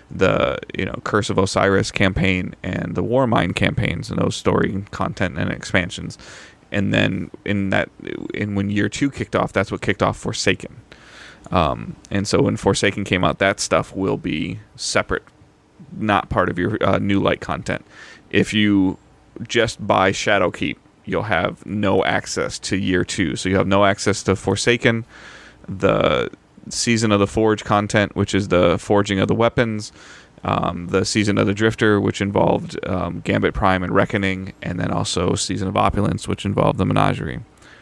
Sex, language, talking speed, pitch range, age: male, English, 175 wpm, 95-105 Hz, 30-49